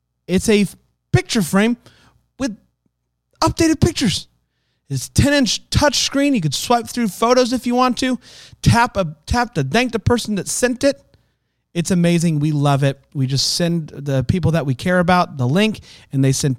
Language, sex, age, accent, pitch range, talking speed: English, male, 30-49, American, 135-190 Hz, 175 wpm